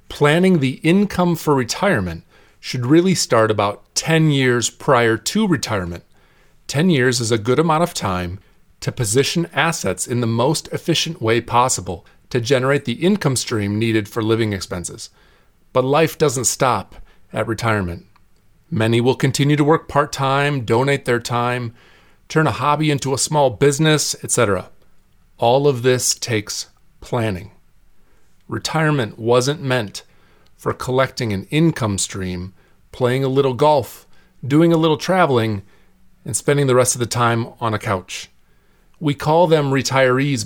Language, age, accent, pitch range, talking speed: English, 40-59, American, 110-145 Hz, 145 wpm